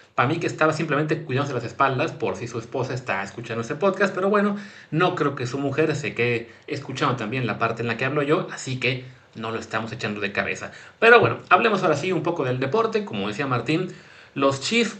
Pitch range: 120-160 Hz